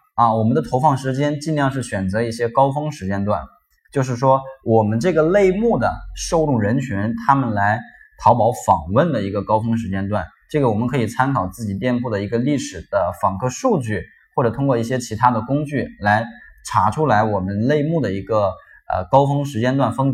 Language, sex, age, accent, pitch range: Chinese, male, 20-39, native, 105-145 Hz